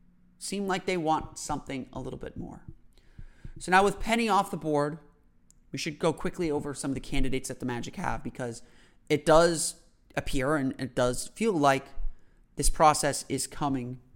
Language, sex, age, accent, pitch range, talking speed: English, male, 30-49, American, 130-165 Hz, 180 wpm